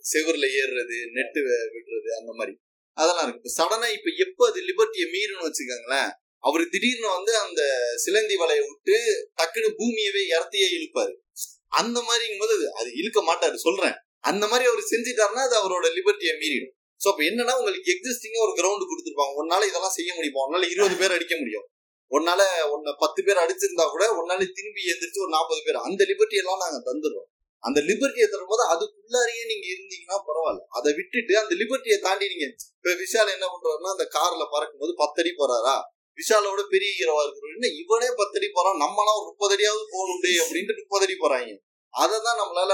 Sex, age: male, 20-39